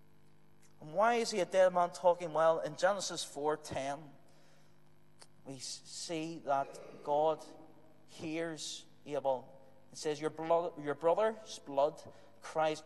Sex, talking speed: male, 115 wpm